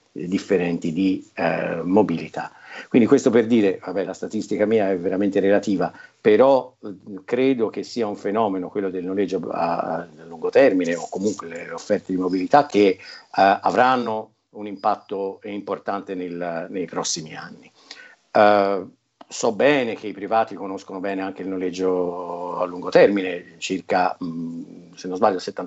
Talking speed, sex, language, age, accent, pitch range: 140 wpm, male, Italian, 50-69, native, 95-110 Hz